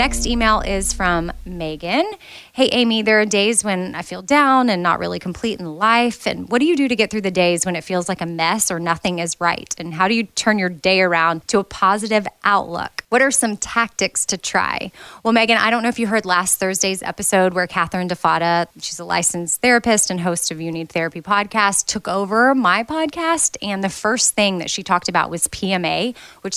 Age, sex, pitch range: 20-39, female, 170-215 Hz